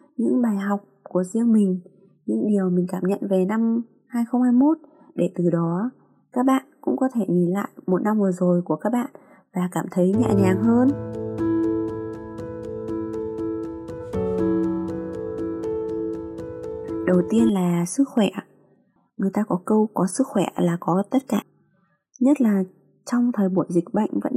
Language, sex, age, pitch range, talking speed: Vietnamese, female, 20-39, 175-235 Hz, 150 wpm